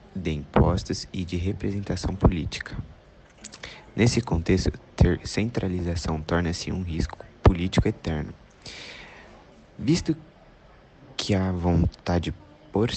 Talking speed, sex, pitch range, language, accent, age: 95 wpm, male, 80-100 Hz, Portuguese, Brazilian, 20-39